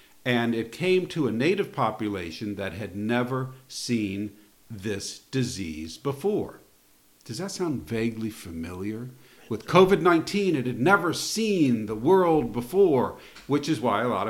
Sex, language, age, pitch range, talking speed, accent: male, English, 50-69, 105-140 Hz, 140 wpm, American